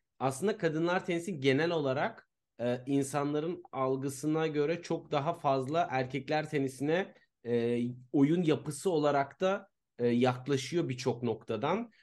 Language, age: Turkish, 40-59